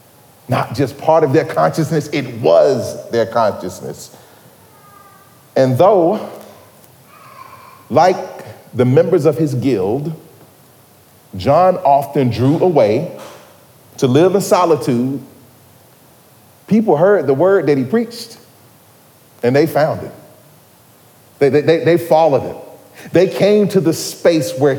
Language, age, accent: English, 40-59, American